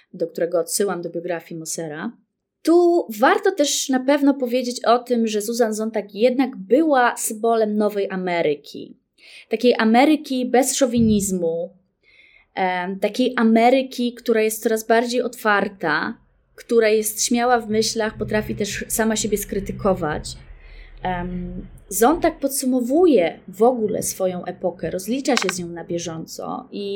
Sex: female